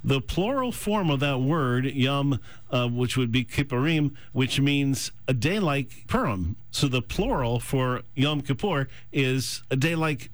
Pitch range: 120-145 Hz